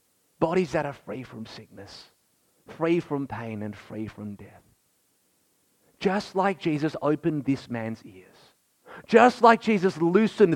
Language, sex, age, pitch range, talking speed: English, male, 30-49, 100-145 Hz, 135 wpm